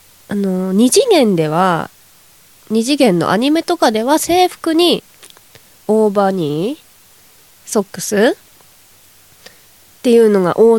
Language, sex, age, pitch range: Japanese, female, 20-39, 190-310 Hz